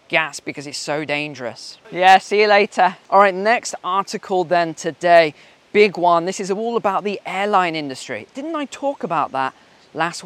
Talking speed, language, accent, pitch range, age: 175 wpm, English, British, 165-215 Hz, 20-39